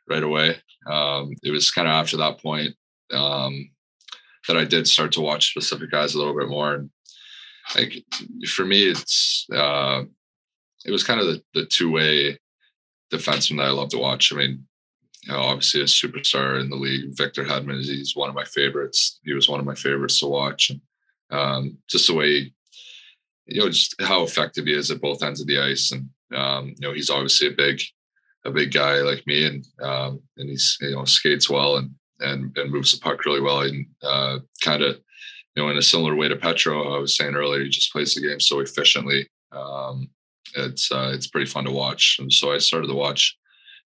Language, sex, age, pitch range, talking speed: English, male, 20-39, 70-75 Hz, 210 wpm